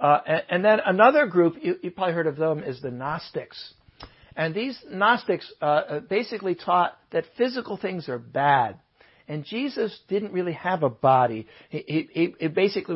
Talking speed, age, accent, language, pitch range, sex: 170 wpm, 60-79, American, English, 140-190 Hz, male